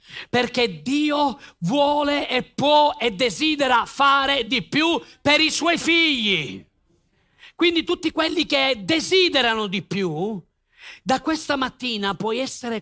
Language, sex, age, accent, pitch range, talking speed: Italian, male, 40-59, native, 190-270 Hz, 120 wpm